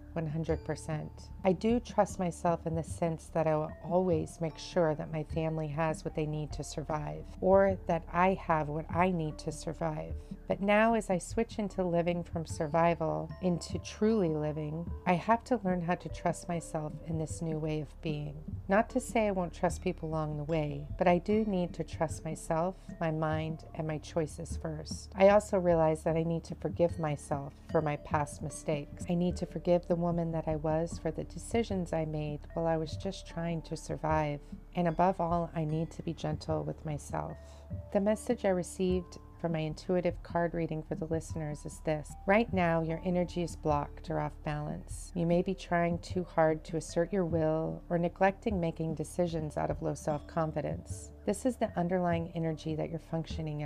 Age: 40-59